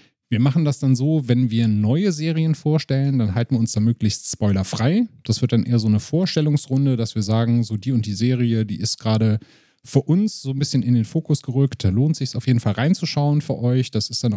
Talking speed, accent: 240 wpm, German